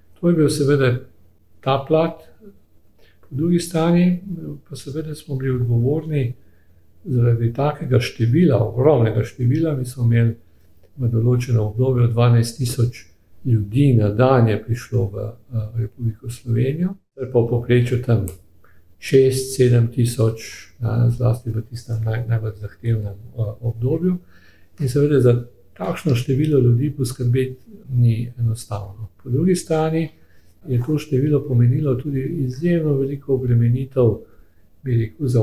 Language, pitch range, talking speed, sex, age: English, 115-140 Hz, 120 wpm, male, 50-69